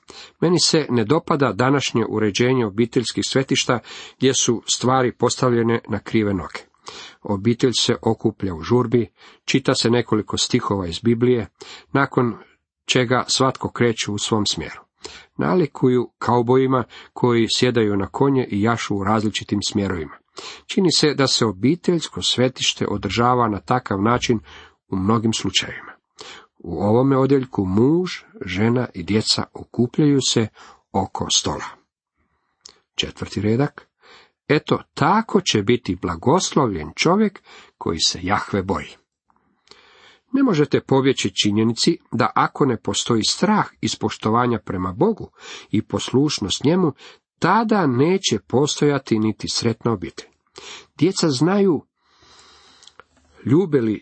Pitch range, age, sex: 105-135 Hz, 40-59, male